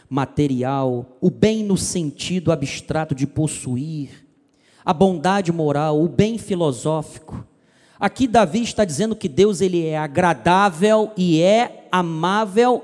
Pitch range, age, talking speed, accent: 185-255 Hz, 40-59, 120 wpm, Brazilian